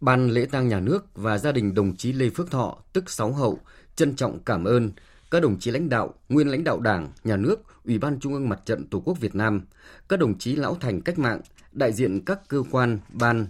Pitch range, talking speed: 105-140 Hz, 240 wpm